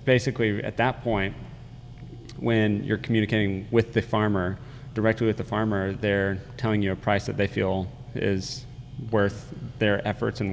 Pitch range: 100-120 Hz